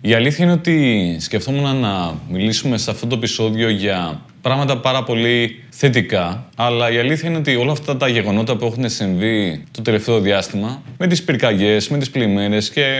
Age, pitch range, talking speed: 20-39, 105-135 Hz, 175 wpm